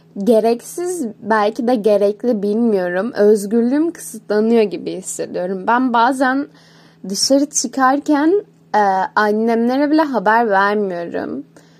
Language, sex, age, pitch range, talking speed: Turkish, female, 10-29, 220-290 Hz, 90 wpm